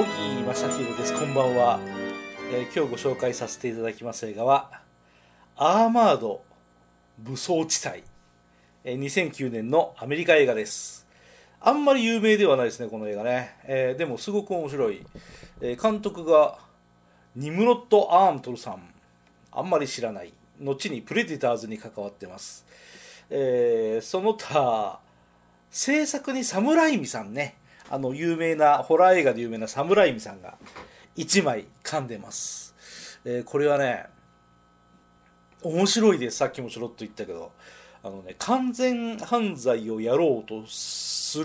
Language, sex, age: Japanese, male, 40-59